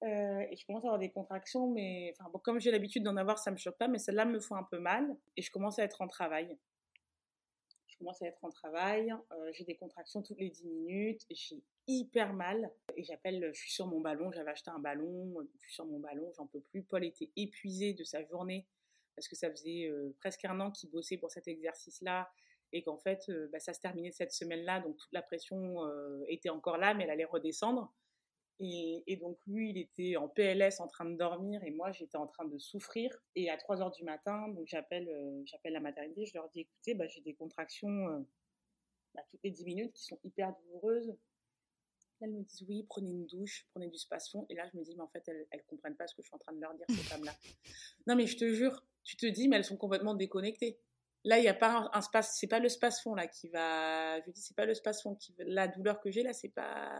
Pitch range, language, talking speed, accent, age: 165-210 Hz, French, 250 wpm, French, 20-39